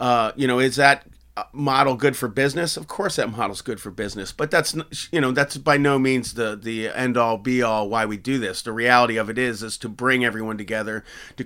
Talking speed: 235 wpm